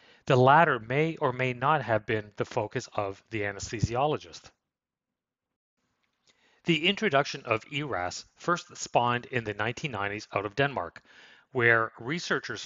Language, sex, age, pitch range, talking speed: English, male, 30-49, 115-145 Hz, 130 wpm